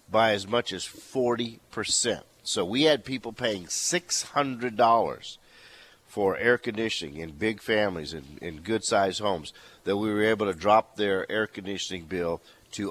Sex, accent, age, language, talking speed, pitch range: male, American, 50-69, English, 165 wpm, 95-120 Hz